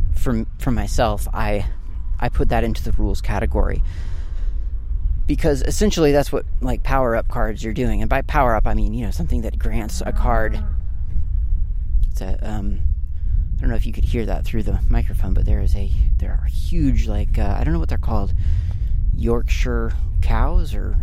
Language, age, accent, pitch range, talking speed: English, 30-49, American, 80-105 Hz, 185 wpm